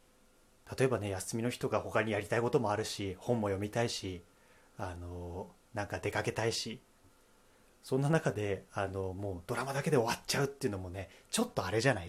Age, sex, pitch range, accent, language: 30-49, male, 100-130 Hz, native, Japanese